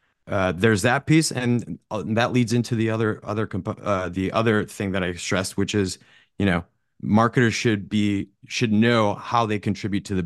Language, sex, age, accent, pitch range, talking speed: English, male, 30-49, American, 95-115 Hz, 195 wpm